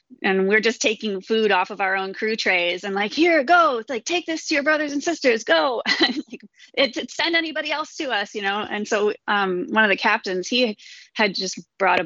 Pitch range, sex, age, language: 180-250 Hz, female, 30-49, English